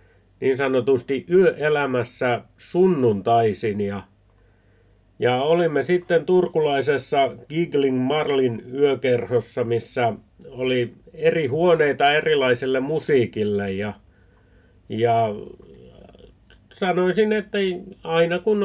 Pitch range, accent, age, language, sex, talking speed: 115-140 Hz, native, 50-69, Finnish, male, 75 wpm